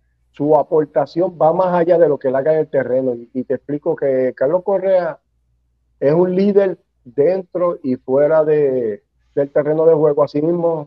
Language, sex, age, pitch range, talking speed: Spanish, male, 40-59, 125-155 Hz, 170 wpm